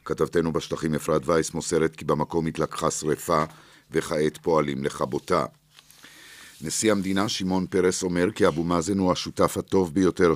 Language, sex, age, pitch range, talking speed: Hebrew, male, 50-69, 80-90 Hz, 140 wpm